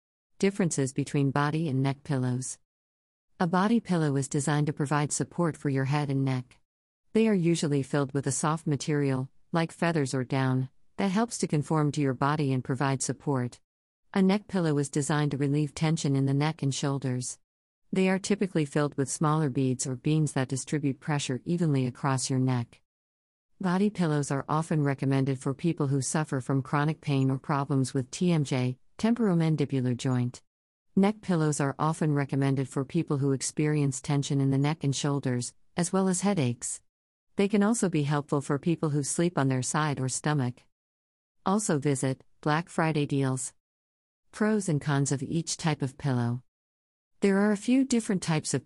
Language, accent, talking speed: English, American, 175 wpm